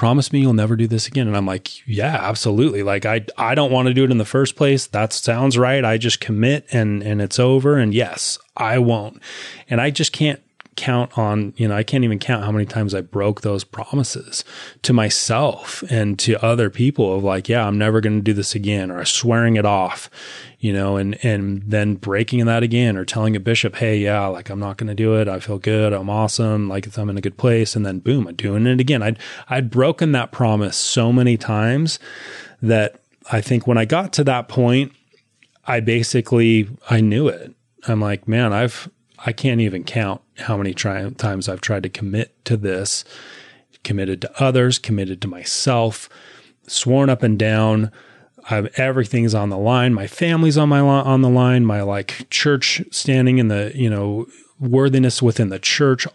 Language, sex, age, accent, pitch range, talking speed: English, male, 30-49, American, 105-130 Hz, 205 wpm